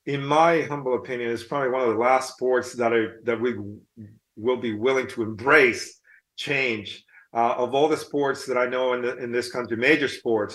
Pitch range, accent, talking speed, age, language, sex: 120-140 Hz, American, 205 wpm, 40-59, English, male